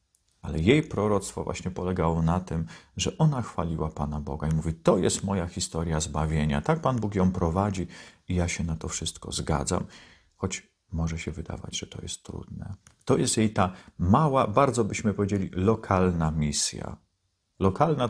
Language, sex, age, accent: Polish, male, 40-59, native